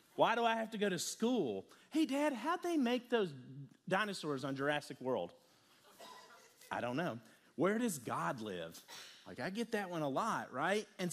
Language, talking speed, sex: English, 185 wpm, male